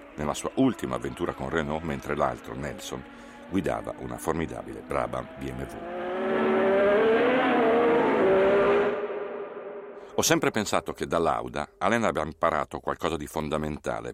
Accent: native